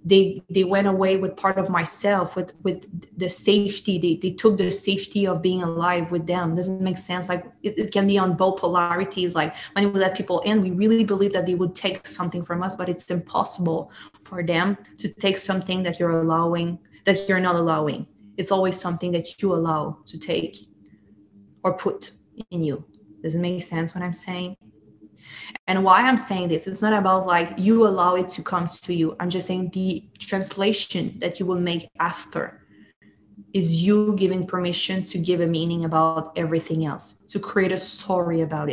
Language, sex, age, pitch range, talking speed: English, female, 20-39, 170-195 Hz, 195 wpm